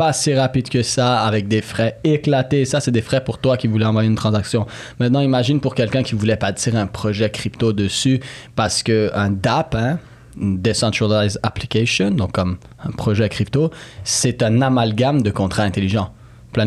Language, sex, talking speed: French, male, 180 wpm